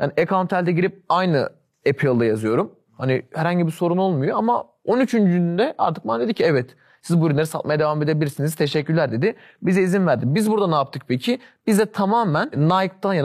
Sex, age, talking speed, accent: male, 30-49, 170 wpm, native